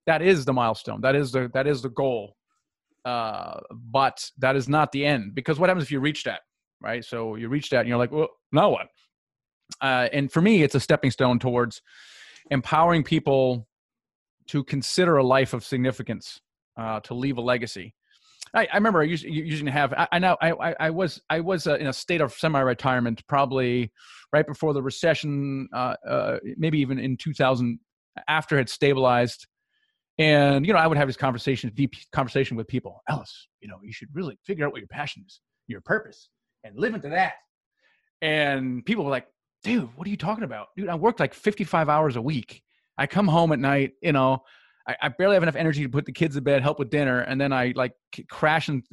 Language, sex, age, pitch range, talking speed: English, male, 30-49, 130-160 Hz, 210 wpm